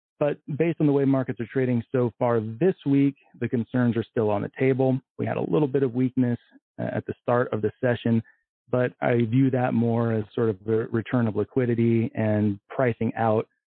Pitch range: 115-130 Hz